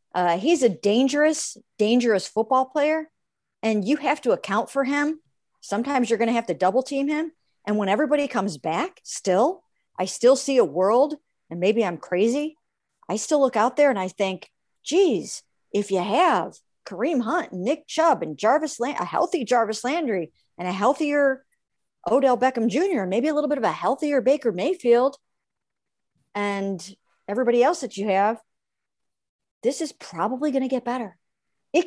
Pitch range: 195-290 Hz